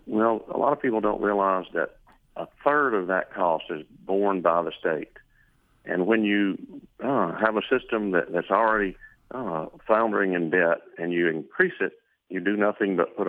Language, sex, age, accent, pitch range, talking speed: English, male, 40-59, American, 95-115 Hz, 185 wpm